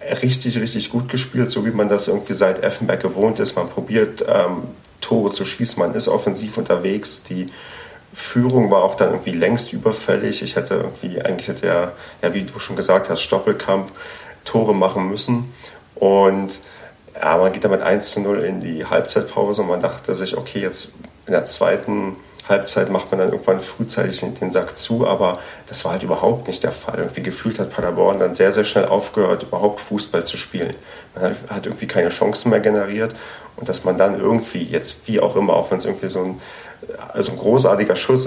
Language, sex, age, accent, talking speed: German, male, 40-59, German, 195 wpm